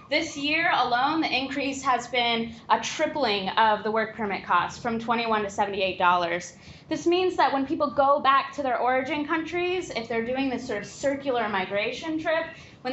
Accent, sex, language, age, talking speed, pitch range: American, female, English, 20-39, 180 wpm, 220-290 Hz